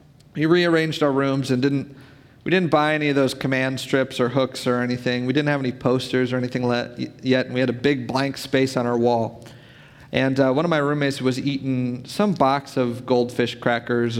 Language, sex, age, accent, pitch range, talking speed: English, male, 40-59, American, 130-175 Hz, 210 wpm